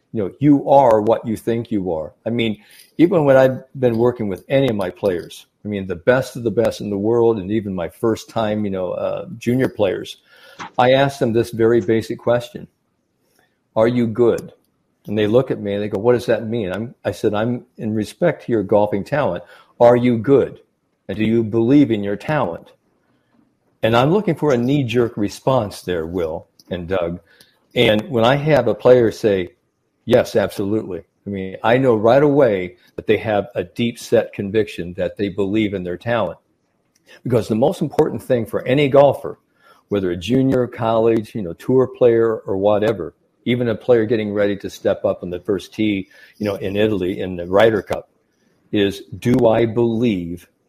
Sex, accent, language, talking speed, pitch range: male, American, English, 195 wpm, 100-125 Hz